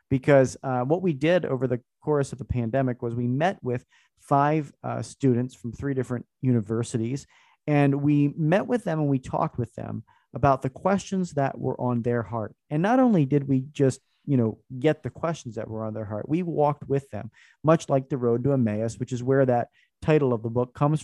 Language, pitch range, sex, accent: English, 120-150 Hz, male, American